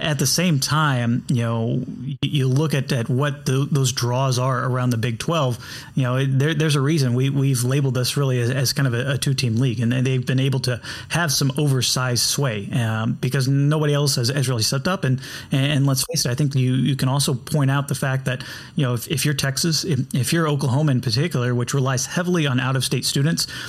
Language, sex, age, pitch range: English, male, 30-49, 125-145 Hz